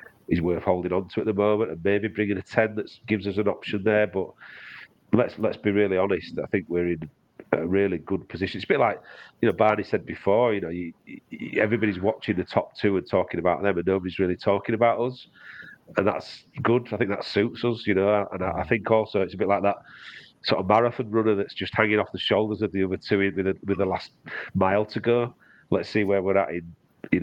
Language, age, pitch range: English, 40-59, 90-110 Hz